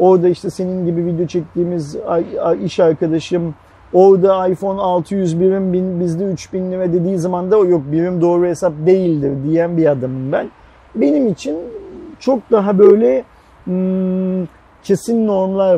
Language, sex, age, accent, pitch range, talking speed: Turkish, male, 40-59, native, 160-200 Hz, 130 wpm